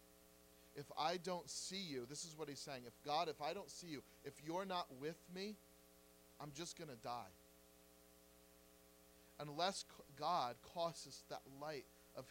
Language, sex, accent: English, male, American